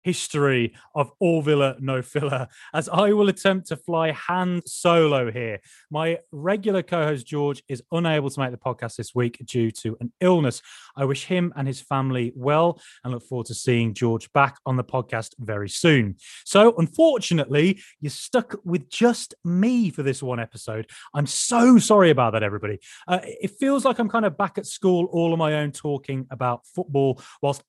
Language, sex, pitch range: English, male, 120-160 Hz